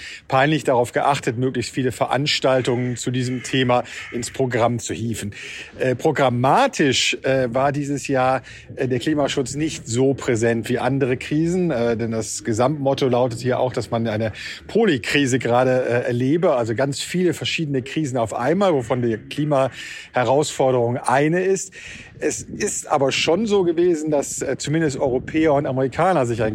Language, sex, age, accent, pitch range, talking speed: German, male, 40-59, German, 120-150 Hz, 150 wpm